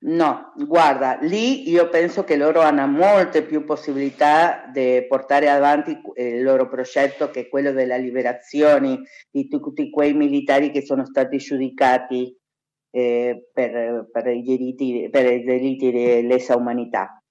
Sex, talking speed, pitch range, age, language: female, 125 wpm, 135-170 Hz, 40-59, Italian